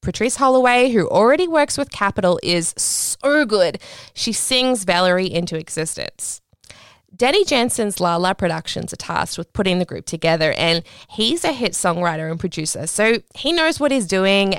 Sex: female